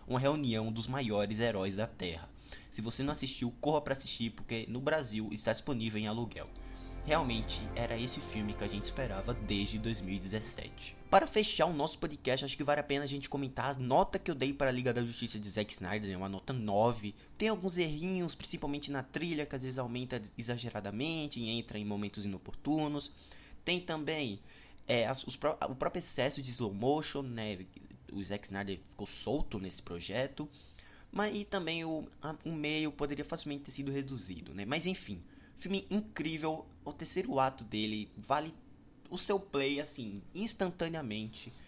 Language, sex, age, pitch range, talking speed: Portuguese, male, 20-39, 105-150 Hz, 180 wpm